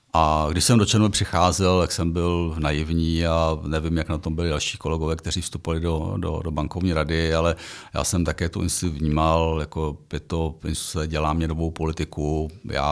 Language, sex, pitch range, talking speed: Czech, male, 80-95 Hz, 185 wpm